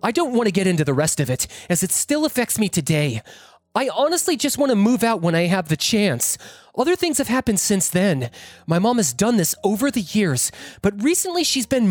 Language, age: English, 20-39